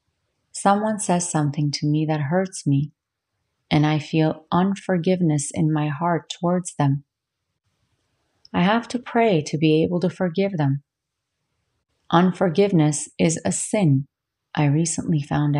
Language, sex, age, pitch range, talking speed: English, female, 40-59, 145-180 Hz, 130 wpm